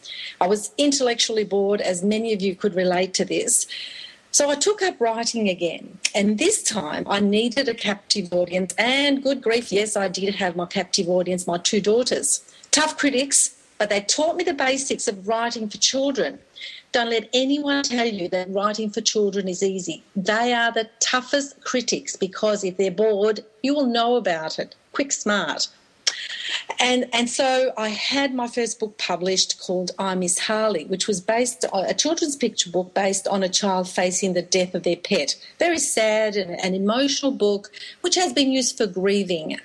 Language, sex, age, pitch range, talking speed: English, female, 40-59, 190-255 Hz, 185 wpm